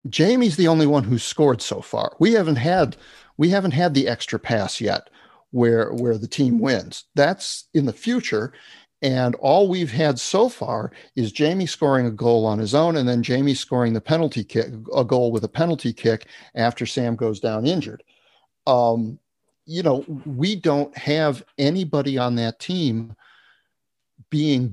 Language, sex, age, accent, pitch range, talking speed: English, male, 50-69, American, 115-150 Hz, 170 wpm